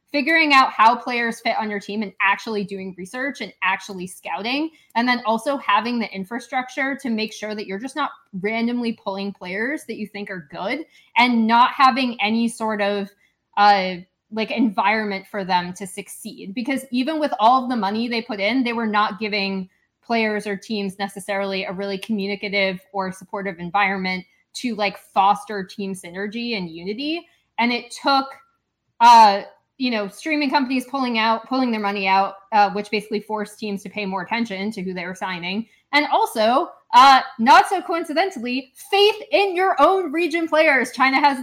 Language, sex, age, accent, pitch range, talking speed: English, female, 20-39, American, 200-265 Hz, 175 wpm